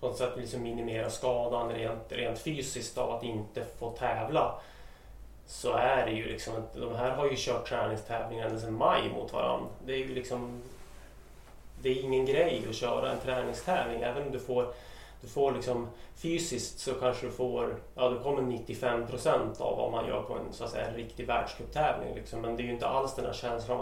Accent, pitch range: Swedish, 115-125 Hz